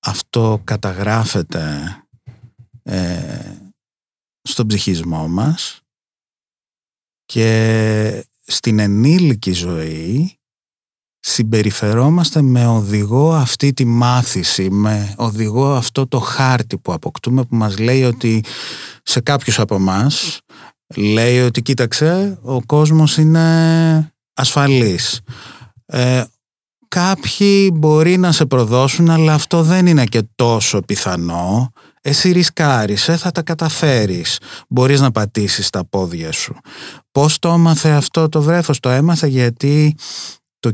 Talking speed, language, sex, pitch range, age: 105 wpm, Greek, male, 110-140 Hz, 30-49